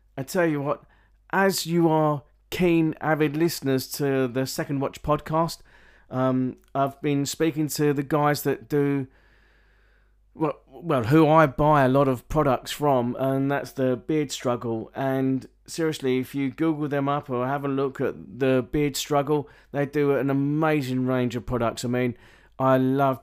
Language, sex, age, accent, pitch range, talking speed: English, male, 40-59, British, 130-155 Hz, 170 wpm